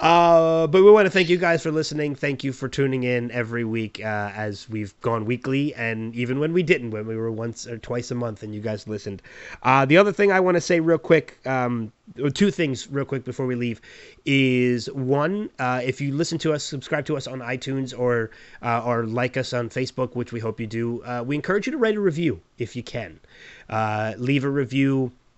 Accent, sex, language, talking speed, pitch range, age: American, male, English, 230 wpm, 120-140 Hz, 30-49